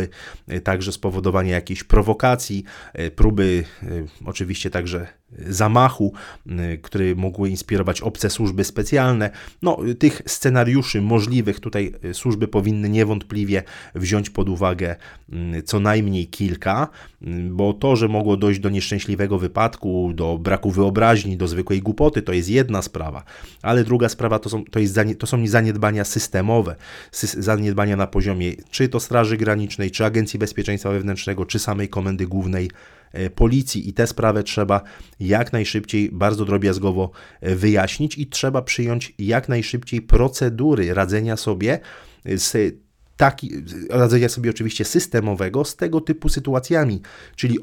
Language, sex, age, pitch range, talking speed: Polish, male, 30-49, 95-115 Hz, 130 wpm